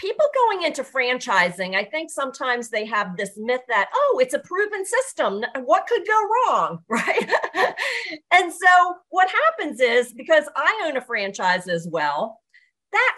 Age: 40-59